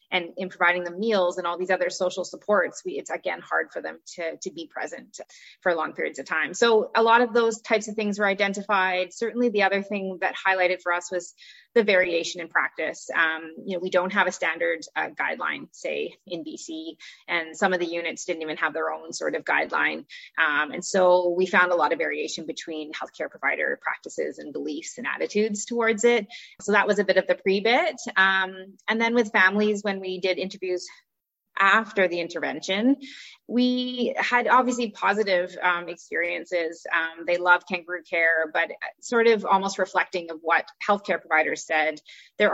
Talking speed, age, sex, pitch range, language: 190 wpm, 20-39, female, 175-225 Hz, English